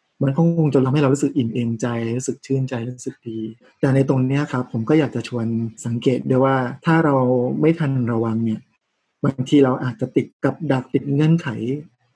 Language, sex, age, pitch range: Thai, male, 20-39, 120-145 Hz